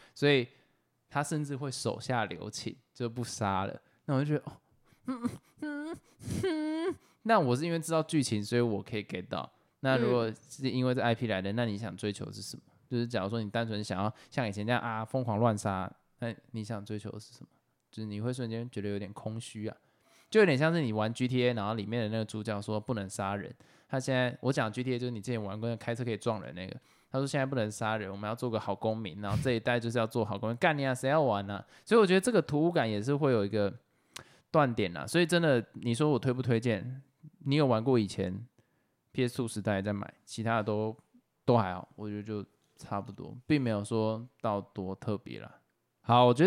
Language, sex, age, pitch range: Chinese, male, 20-39, 105-135 Hz